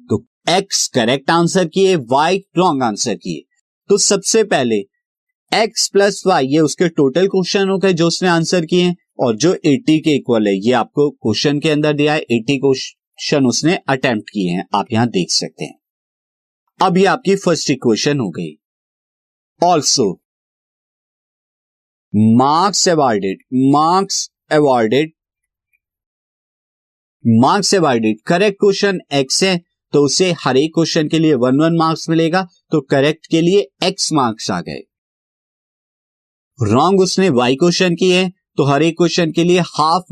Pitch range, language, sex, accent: 130-180 Hz, Hindi, male, native